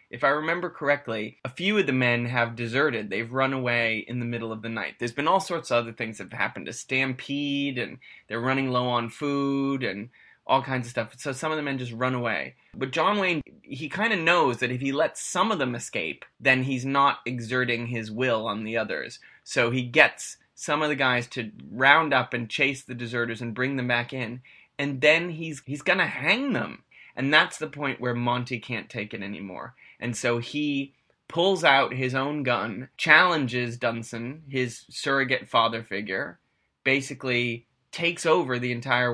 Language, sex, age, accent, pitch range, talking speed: English, male, 20-39, American, 115-135 Hz, 200 wpm